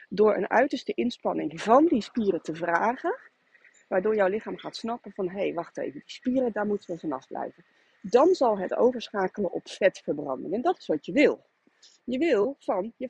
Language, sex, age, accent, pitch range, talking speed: Dutch, female, 30-49, Dutch, 175-255 Hz, 190 wpm